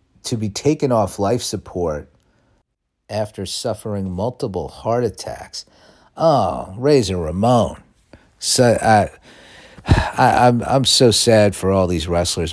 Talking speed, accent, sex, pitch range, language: 120 wpm, American, male, 95-125 Hz, English